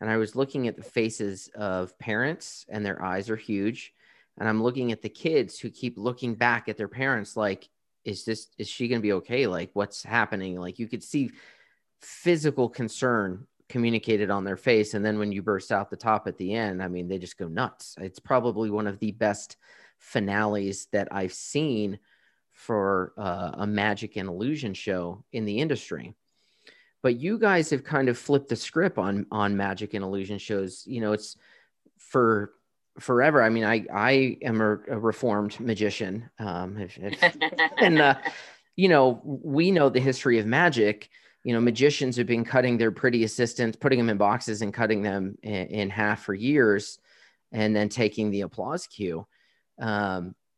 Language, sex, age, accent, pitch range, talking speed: English, male, 30-49, American, 100-125 Hz, 180 wpm